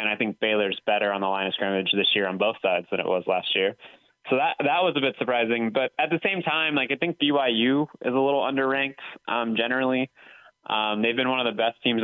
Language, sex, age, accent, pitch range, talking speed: English, male, 20-39, American, 100-120 Hz, 255 wpm